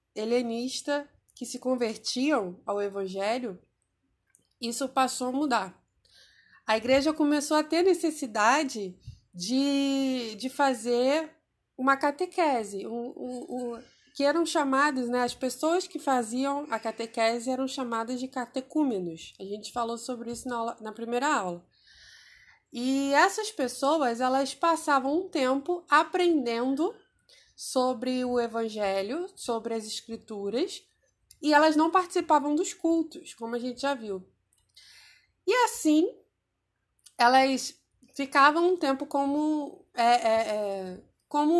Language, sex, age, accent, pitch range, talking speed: Portuguese, female, 20-39, Brazilian, 240-305 Hz, 120 wpm